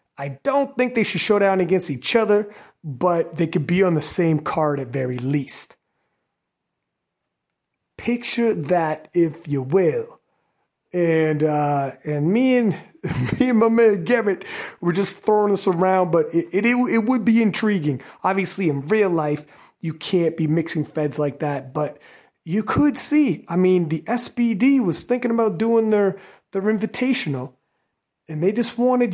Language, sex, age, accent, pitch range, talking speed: English, male, 30-49, American, 155-215 Hz, 160 wpm